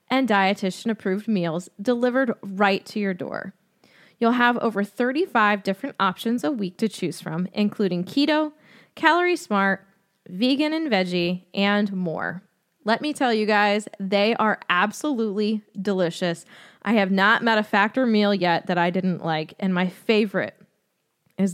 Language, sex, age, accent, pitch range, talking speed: English, female, 20-39, American, 190-245 Hz, 150 wpm